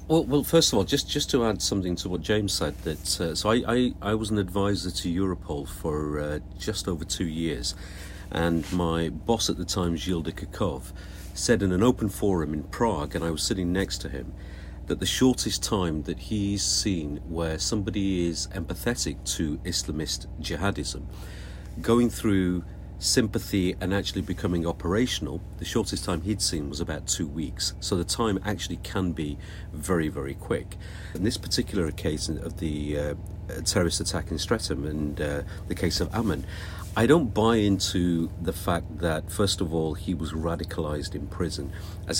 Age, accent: 50-69, British